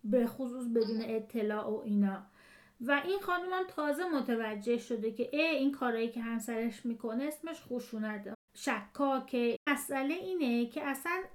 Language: Persian